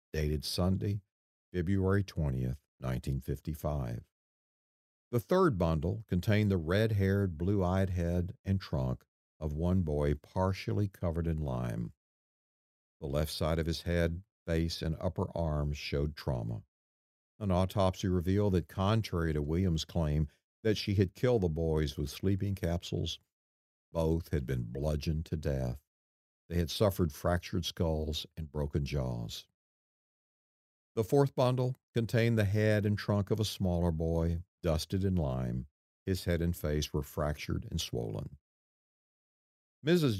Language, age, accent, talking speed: English, 50-69, American, 135 wpm